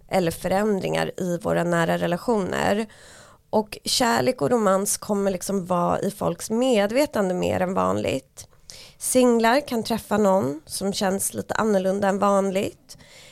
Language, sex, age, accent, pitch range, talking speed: Swedish, female, 20-39, native, 170-215 Hz, 130 wpm